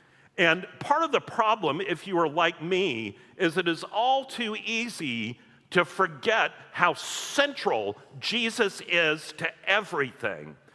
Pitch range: 160-215 Hz